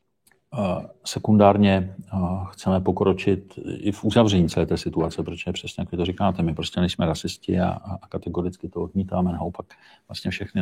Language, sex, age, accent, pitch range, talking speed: Czech, male, 40-59, native, 85-95 Hz, 160 wpm